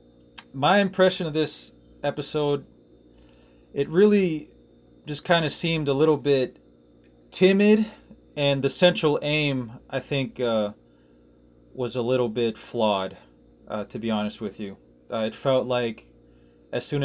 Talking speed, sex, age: 135 wpm, male, 20-39